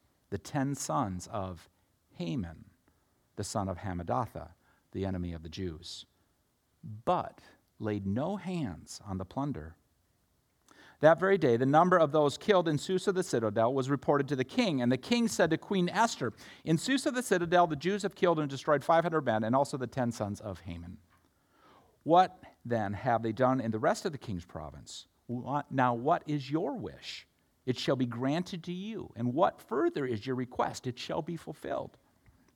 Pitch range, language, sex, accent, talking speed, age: 120-195 Hz, English, male, American, 180 wpm, 50-69